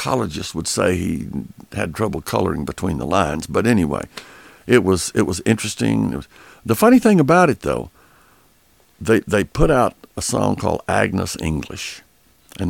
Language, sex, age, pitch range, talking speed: English, male, 60-79, 90-120 Hz, 150 wpm